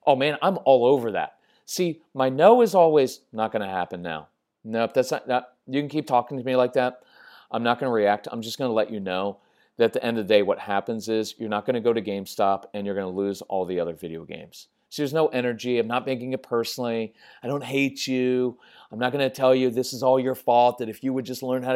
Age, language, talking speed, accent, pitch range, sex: 40-59, English, 275 wpm, American, 120-155 Hz, male